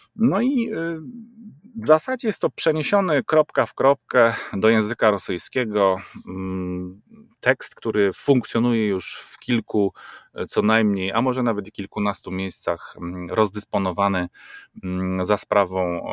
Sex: male